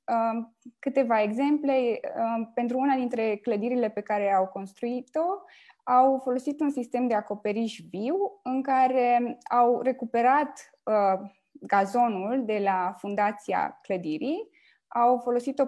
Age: 20-39